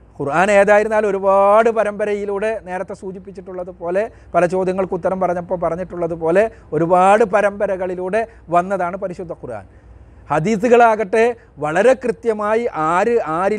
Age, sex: 40-59, male